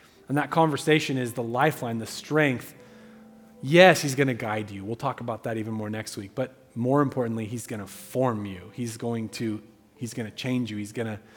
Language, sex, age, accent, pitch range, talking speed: English, male, 30-49, American, 120-155 Hz, 205 wpm